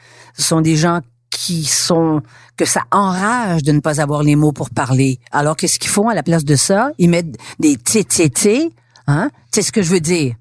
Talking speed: 215 wpm